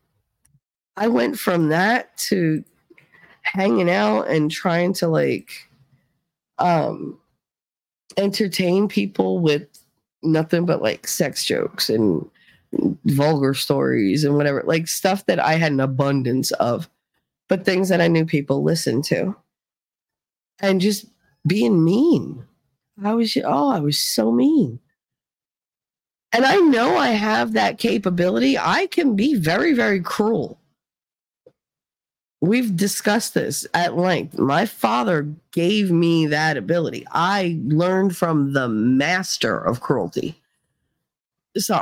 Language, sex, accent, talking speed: English, female, American, 125 wpm